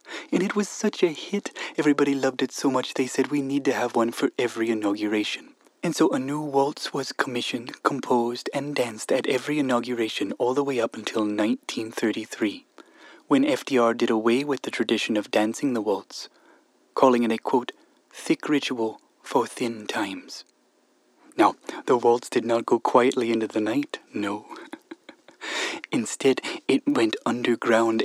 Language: English